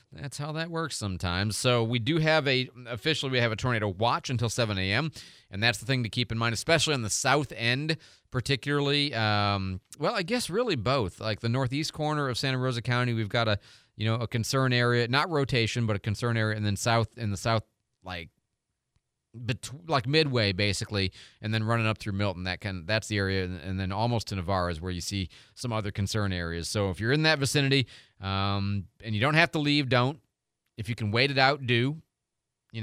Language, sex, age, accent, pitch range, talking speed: English, male, 30-49, American, 105-135 Hz, 210 wpm